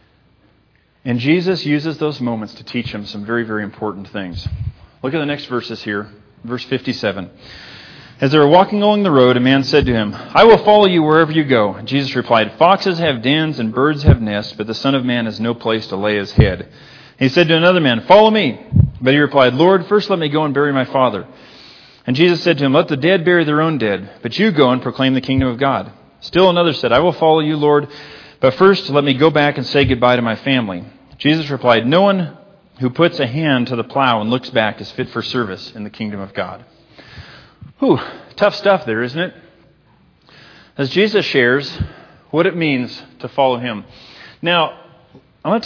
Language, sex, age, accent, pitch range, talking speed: English, male, 40-59, American, 120-160 Hz, 215 wpm